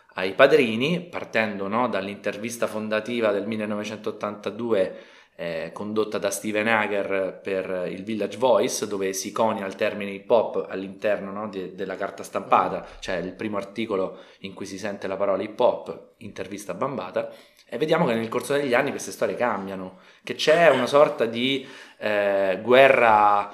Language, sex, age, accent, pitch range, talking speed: Italian, male, 20-39, native, 100-120 Hz, 150 wpm